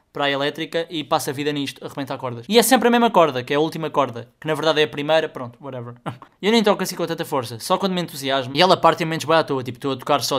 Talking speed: 305 wpm